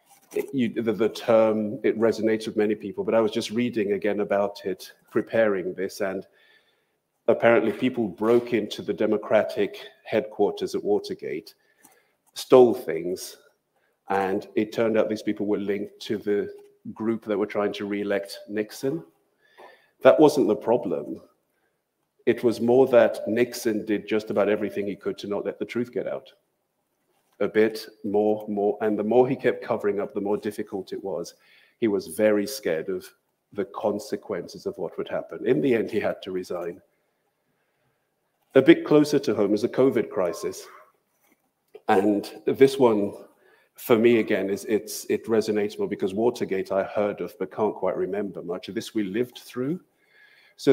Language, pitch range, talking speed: English, 105-135 Hz, 165 wpm